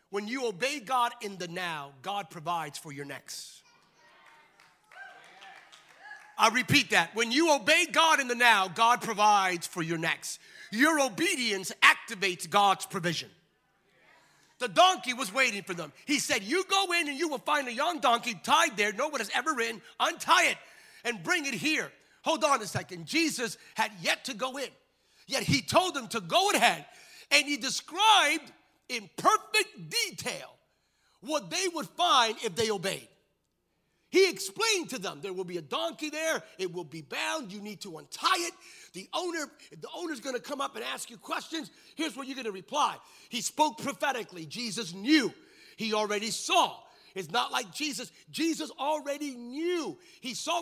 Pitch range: 205-315 Hz